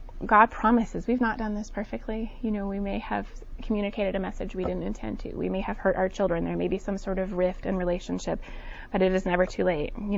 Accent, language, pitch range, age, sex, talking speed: American, English, 185-235 Hz, 20-39, female, 240 wpm